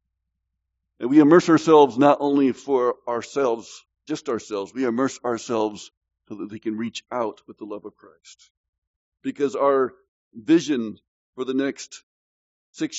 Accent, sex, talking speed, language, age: American, male, 145 wpm, English, 50-69